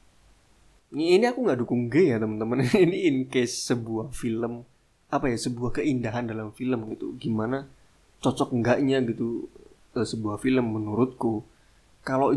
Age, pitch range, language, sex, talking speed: 20-39, 110-135 Hz, Indonesian, male, 130 wpm